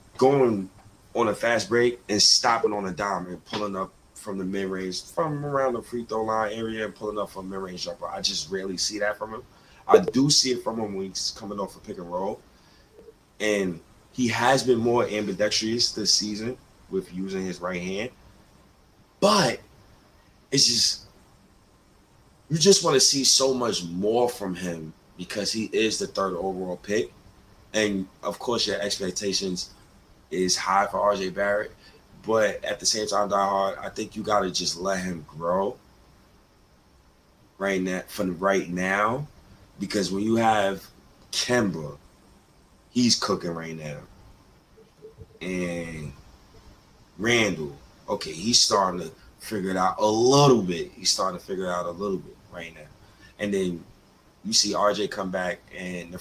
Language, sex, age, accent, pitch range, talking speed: English, male, 20-39, American, 95-110 Hz, 170 wpm